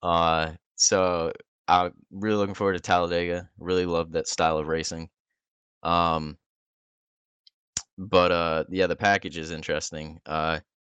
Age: 10-29